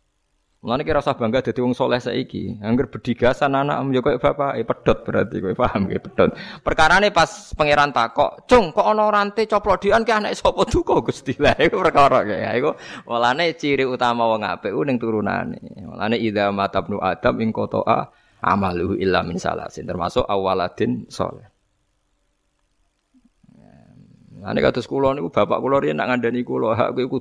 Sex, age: male, 20-39